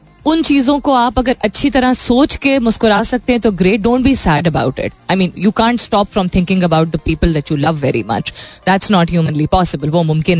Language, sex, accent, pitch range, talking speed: Hindi, female, native, 180-255 Hz, 230 wpm